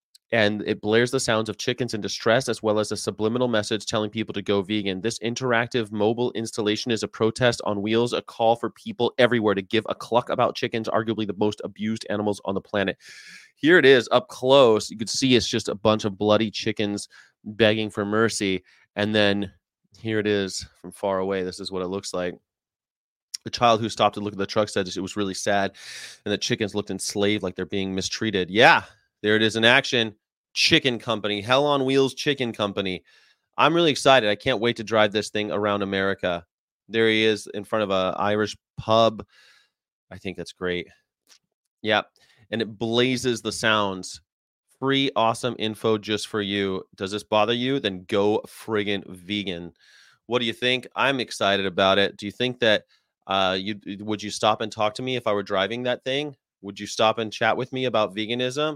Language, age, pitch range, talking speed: English, 30-49, 100-115 Hz, 200 wpm